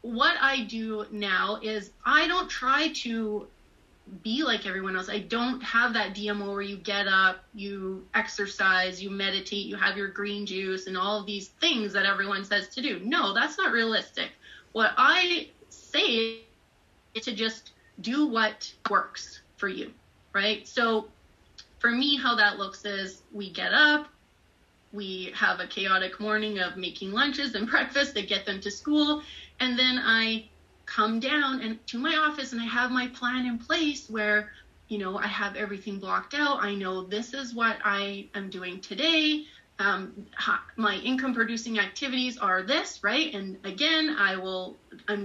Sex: female